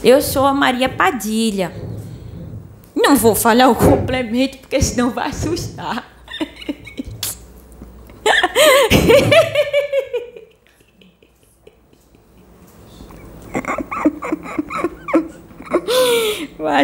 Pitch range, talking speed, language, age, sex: 190-280 Hz, 55 wpm, Portuguese, 20-39, female